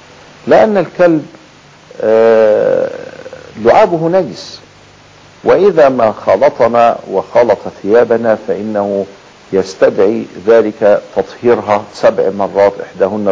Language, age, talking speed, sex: Arabic, 50-69, 75 wpm, male